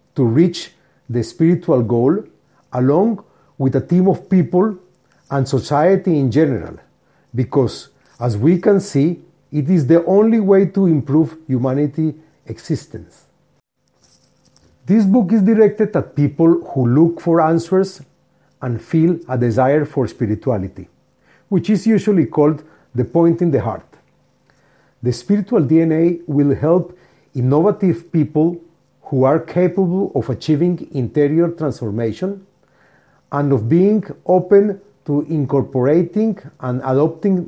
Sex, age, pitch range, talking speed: male, 50-69, 130-175 Hz, 120 wpm